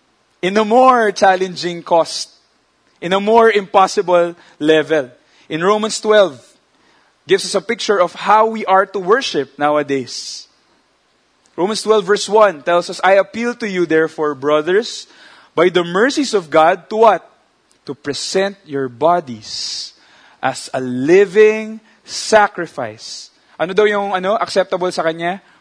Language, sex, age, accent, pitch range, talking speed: English, male, 20-39, Filipino, 160-215 Hz, 135 wpm